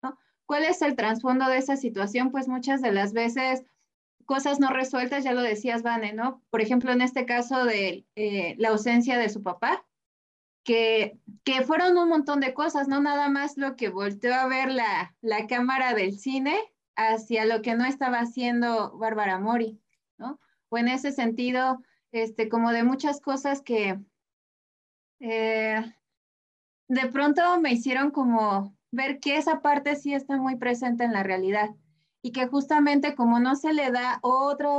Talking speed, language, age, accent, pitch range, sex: 165 wpm, Spanish, 20-39, Mexican, 225-275 Hz, female